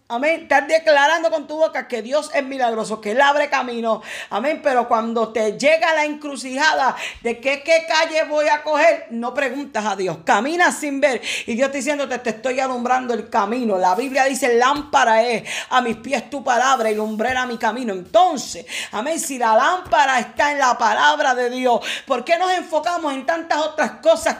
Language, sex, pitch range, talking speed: Spanish, female, 250-310 Hz, 190 wpm